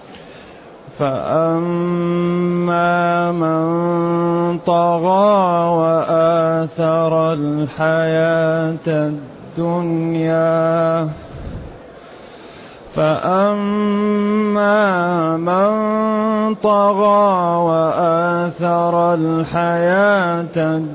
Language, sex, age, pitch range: Arabic, male, 30-49, 160-175 Hz